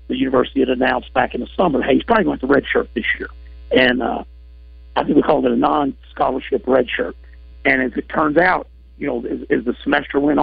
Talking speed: 235 wpm